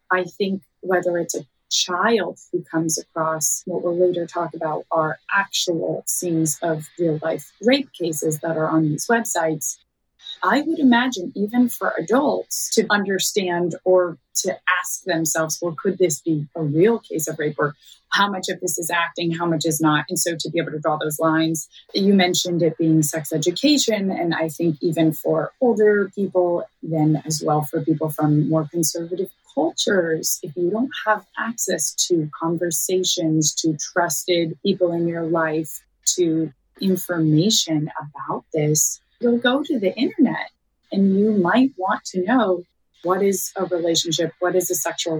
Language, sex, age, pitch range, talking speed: English, female, 30-49, 160-190 Hz, 165 wpm